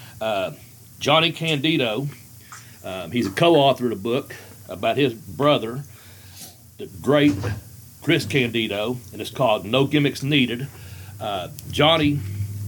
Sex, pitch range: male, 115-140 Hz